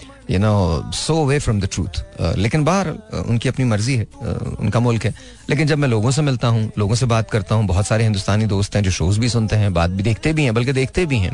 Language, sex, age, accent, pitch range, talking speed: Hindi, male, 30-49, native, 100-120 Hz, 275 wpm